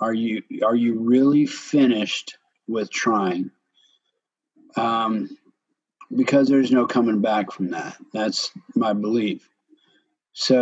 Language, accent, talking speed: English, American, 115 wpm